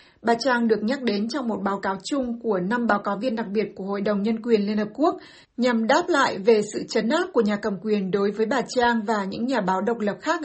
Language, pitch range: Vietnamese, 210-255 Hz